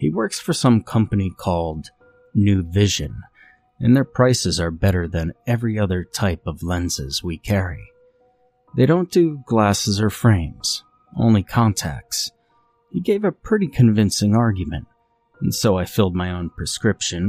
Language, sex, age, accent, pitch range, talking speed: English, male, 30-49, American, 85-115 Hz, 145 wpm